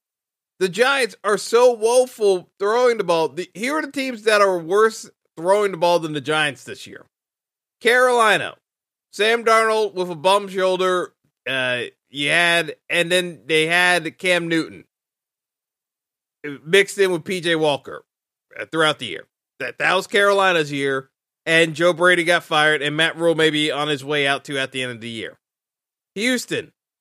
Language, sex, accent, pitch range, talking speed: English, male, American, 160-205 Hz, 165 wpm